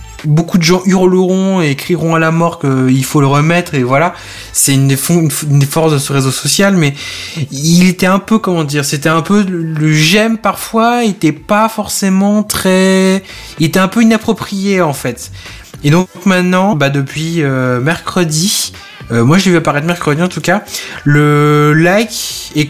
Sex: male